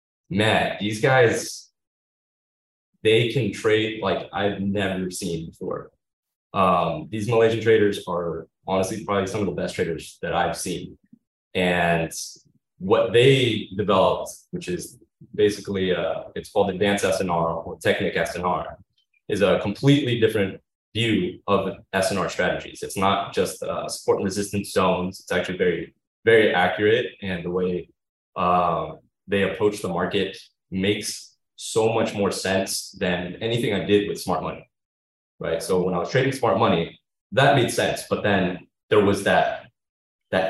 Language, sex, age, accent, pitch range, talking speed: English, male, 20-39, American, 90-115 Hz, 145 wpm